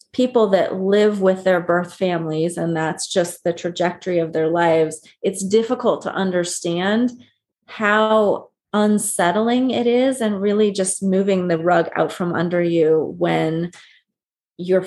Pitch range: 180-230 Hz